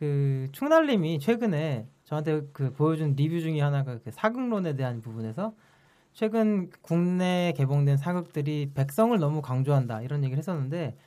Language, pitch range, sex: Korean, 140-215 Hz, male